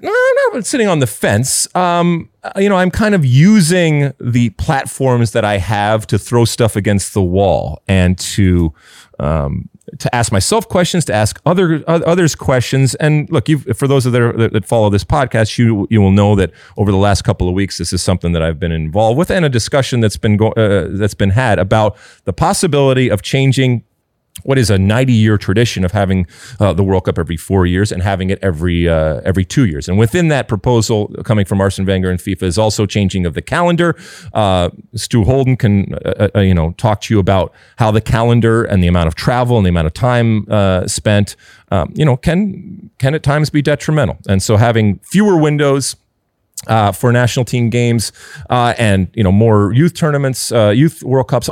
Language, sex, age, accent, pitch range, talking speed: English, male, 30-49, American, 100-135 Hz, 205 wpm